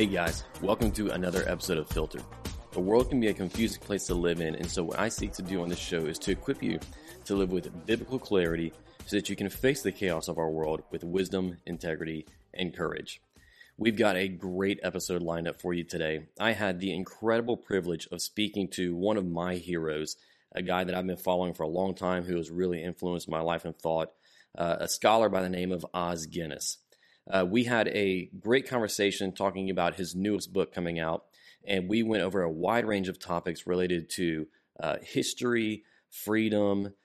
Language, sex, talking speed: English, male, 205 wpm